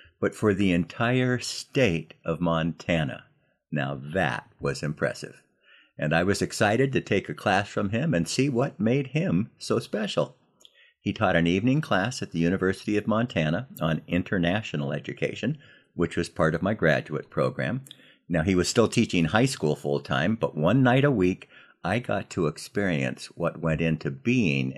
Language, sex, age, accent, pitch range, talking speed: English, male, 60-79, American, 80-105 Hz, 165 wpm